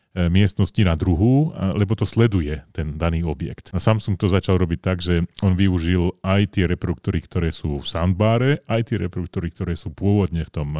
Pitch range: 90-105 Hz